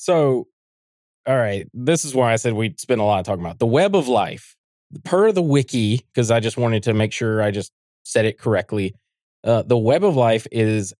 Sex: male